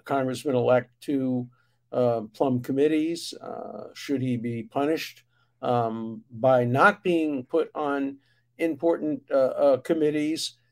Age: 50-69